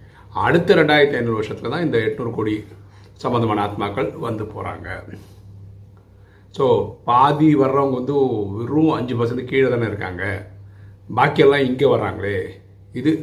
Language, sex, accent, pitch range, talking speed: Tamil, male, native, 100-125 Hz, 120 wpm